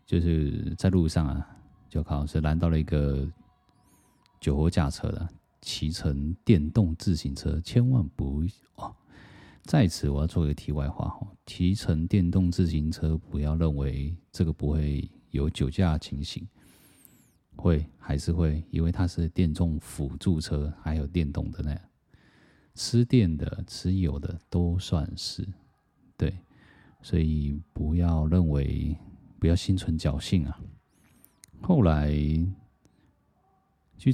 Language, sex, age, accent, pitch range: Chinese, male, 30-49, native, 75-90 Hz